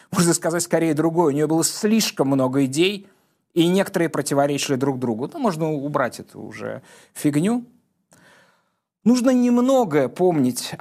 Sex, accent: male, native